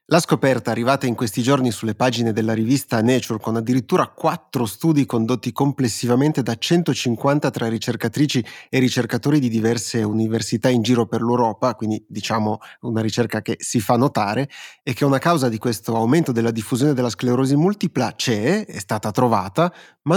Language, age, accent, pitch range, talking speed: Italian, 30-49, native, 115-140 Hz, 165 wpm